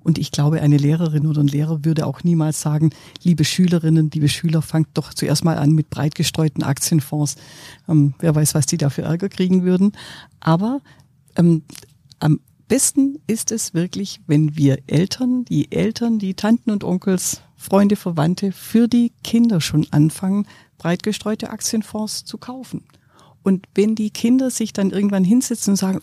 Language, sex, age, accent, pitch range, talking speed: German, female, 50-69, German, 155-205 Hz, 170 wpm